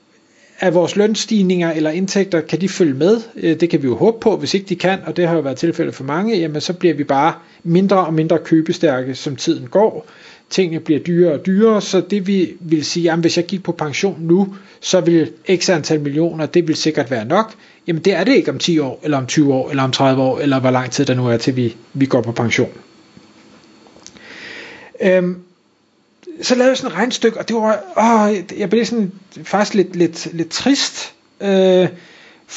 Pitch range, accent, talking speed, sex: 145-195 Hz, native, 210 wpm, male